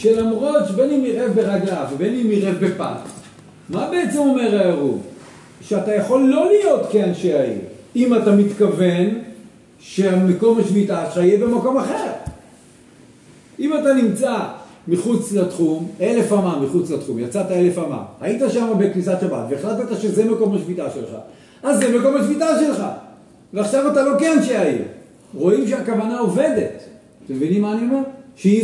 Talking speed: 140 wpm